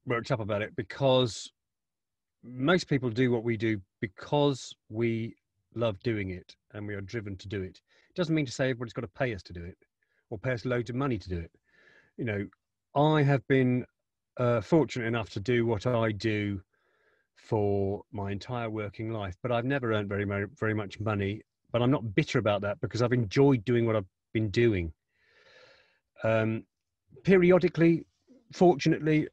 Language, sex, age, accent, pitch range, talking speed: English, male, 40-59, British, 105-130 Hz, 180 wpm